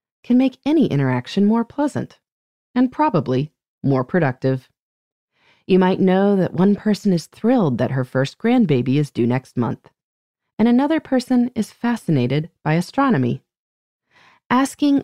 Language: English